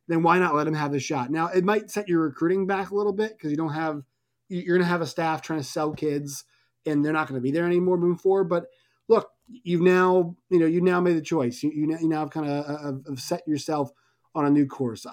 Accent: American